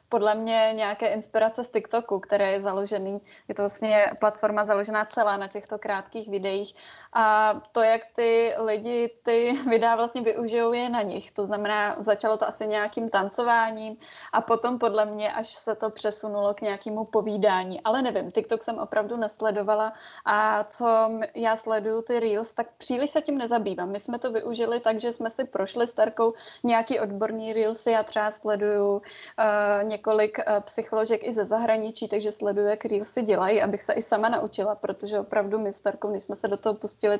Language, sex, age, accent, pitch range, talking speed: Czech, female, 20-39, native, 210-230 Hz, 175 wpm